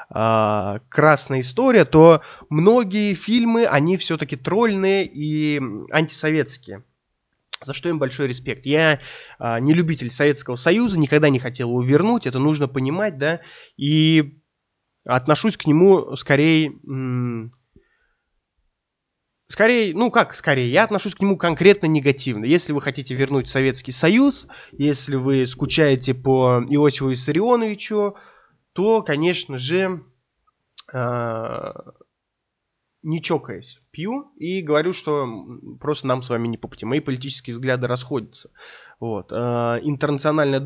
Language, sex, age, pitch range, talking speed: Russian, male, 20-39, 130-180 Hz, 115 wpm